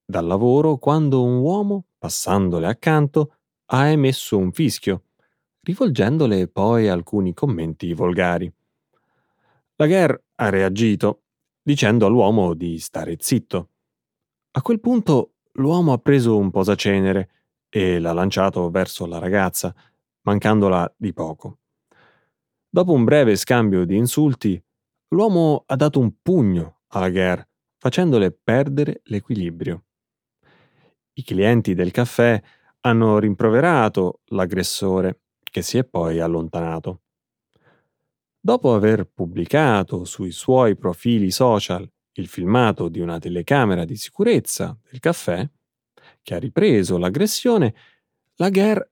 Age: 30-49